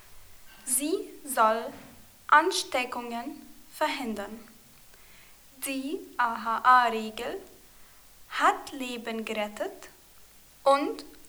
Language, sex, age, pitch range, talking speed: German, female, 20-39, 235-310 Hz, 55 wpm